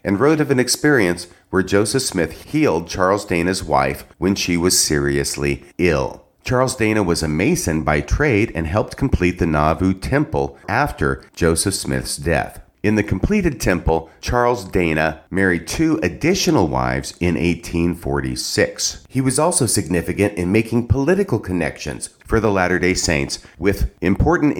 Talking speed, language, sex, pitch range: 145 wpm, English, male, 80-110 Hz